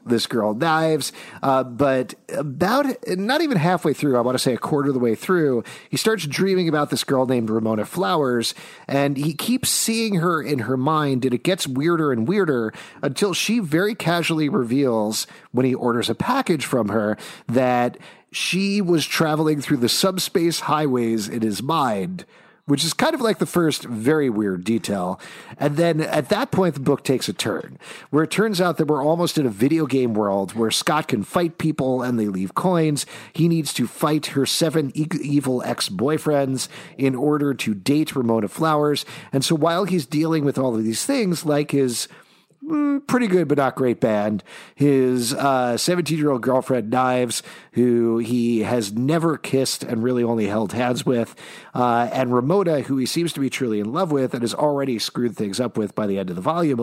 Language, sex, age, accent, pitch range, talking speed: English, male, 40-59, American, 120-165 Hz, 190 wpm